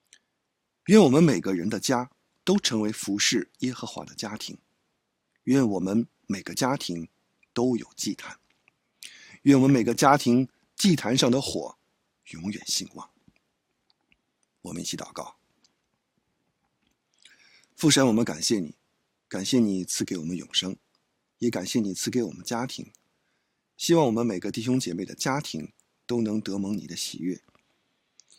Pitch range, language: 105-125 Hz, English